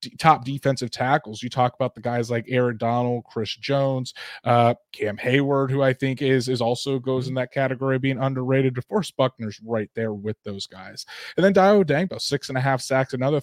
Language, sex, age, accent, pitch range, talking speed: English, male, 20-39, American, 115-140 Hz, 200 wpm